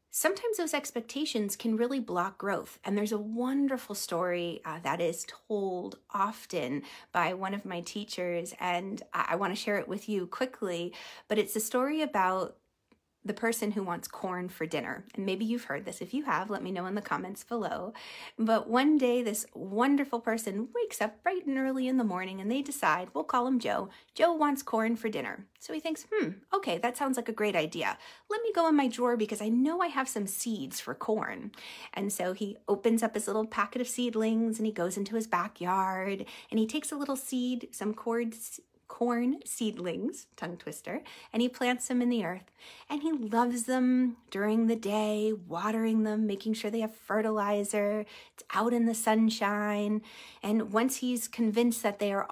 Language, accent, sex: English, American, female